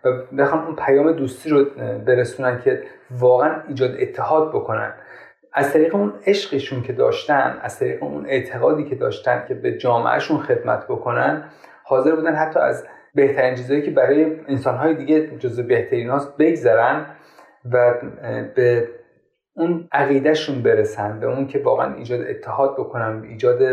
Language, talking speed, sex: Persian, 140 wpm, male